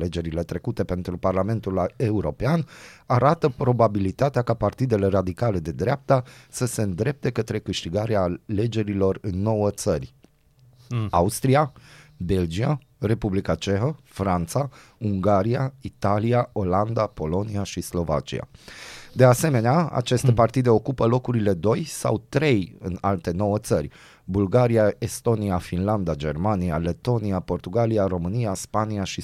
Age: 30-49